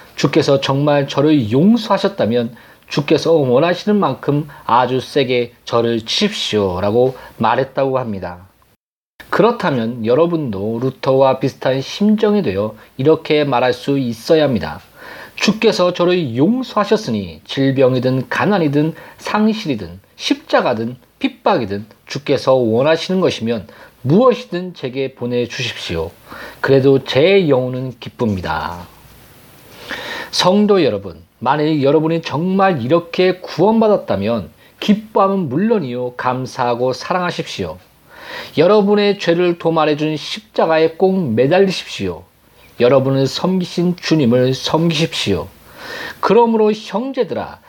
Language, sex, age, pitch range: Korean, male, 40-59, 125-180 Hz